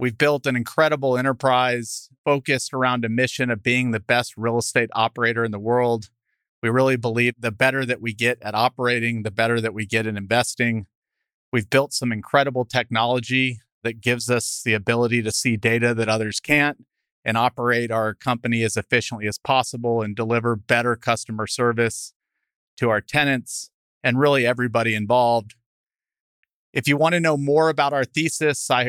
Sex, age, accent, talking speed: male, 40-59, American, 170 wpm